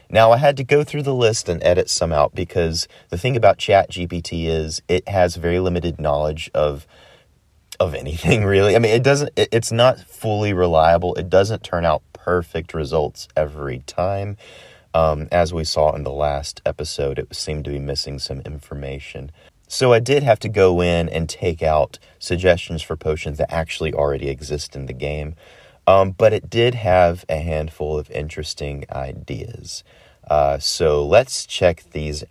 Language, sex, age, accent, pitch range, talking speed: English, male, 30-49, American, 75-115 Hz, 175 wpm